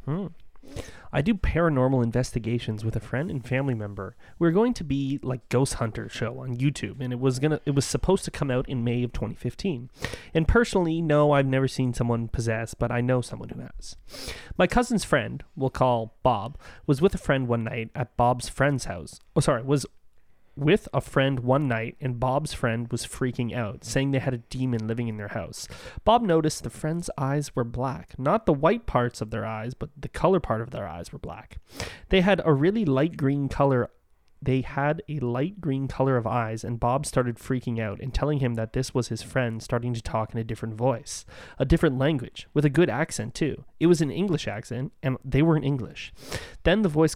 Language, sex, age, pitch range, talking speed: English, male, 30-49, 115-145 Hz, 215 wpm